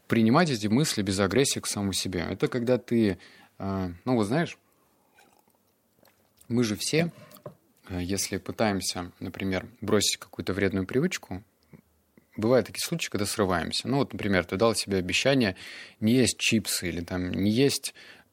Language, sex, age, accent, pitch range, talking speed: Russian, male, 20-39, native, 95-125 Hz, 140 wpm